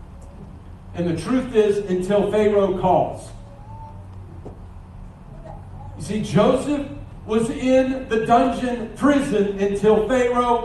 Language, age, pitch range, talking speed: English, 50-69, 185-255 Hz, 95 wpm